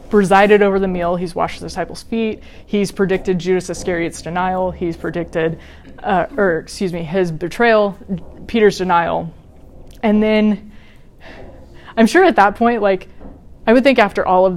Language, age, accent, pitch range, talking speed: English, 20-39, American, 180-205 Hz, 155 wpm